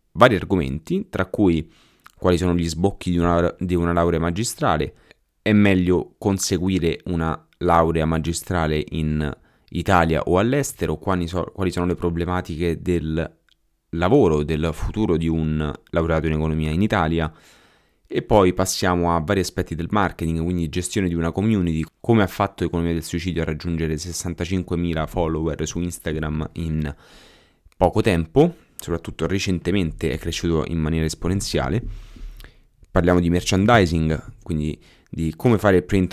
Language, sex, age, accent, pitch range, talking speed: Italian, male, 20-39, native, 80-100 Hz, 135 wpm